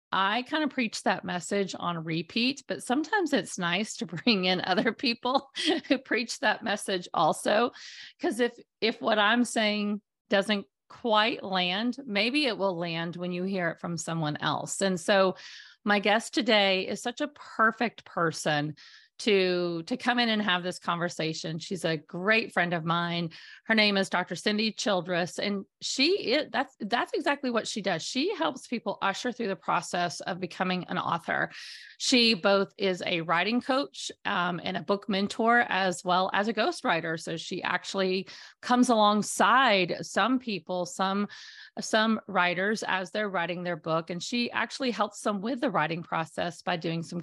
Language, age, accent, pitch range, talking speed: English, 40-59, American, 180-240 Hz, 175 wpm